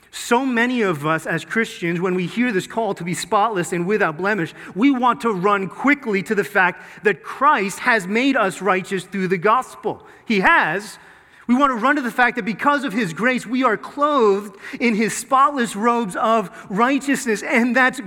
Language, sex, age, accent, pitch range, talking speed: English, male, 30-49, American, 195-260 Hz, 195 wpm